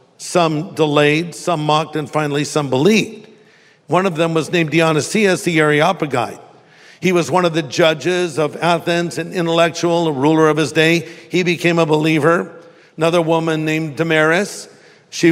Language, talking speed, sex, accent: English, 155 wpm, male, American